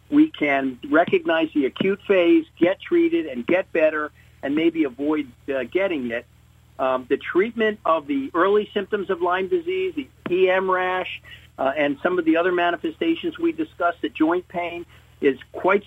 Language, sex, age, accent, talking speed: English, male, 50-69, American, 165 wpm